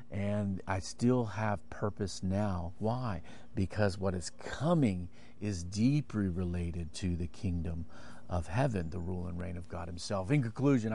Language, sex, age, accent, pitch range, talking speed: English, male, 40-59, American, 95-115 Hz, 155 wpm